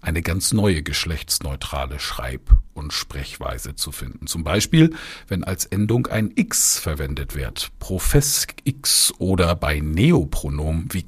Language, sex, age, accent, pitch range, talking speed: German, male, 50-69, German, 80-115 Hz, 130 wpm